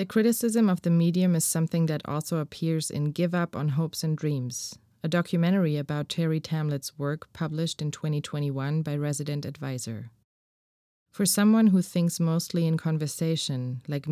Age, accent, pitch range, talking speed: 20-39, German, 150-175 Hz, 155 wpm